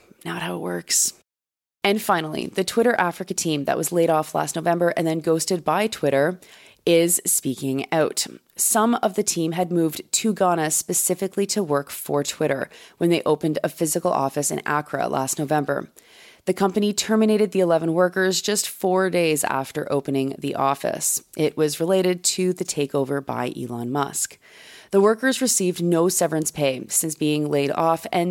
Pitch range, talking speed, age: 145-185 Hz, 170 wpm, 30-49